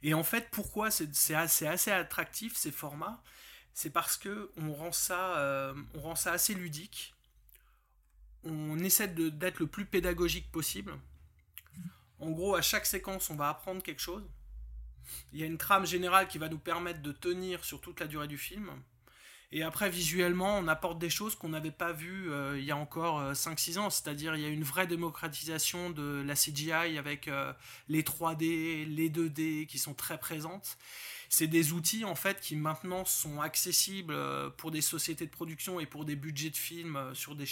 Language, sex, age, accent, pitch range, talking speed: French, male, 20-39, French, 145-175 Hz, 185 wpm